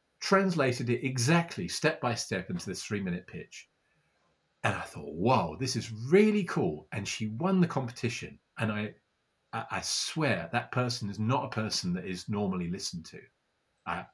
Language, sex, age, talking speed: Dutch, male, 40-59, 170 wpm